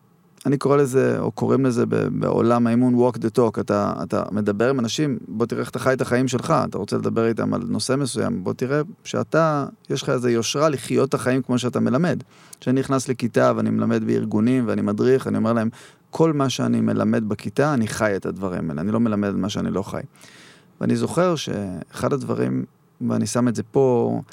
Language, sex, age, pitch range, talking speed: Hebrew, male, 30-49, 115-155 Hz, 205 wpm